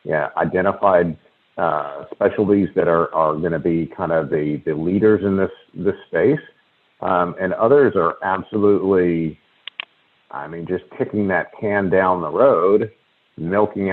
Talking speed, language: 145 wpm, English